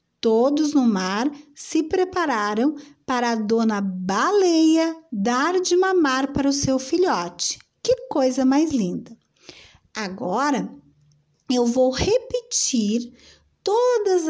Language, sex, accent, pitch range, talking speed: Portuguese, female, Brazilian, 230-345 Hz, 105 wpm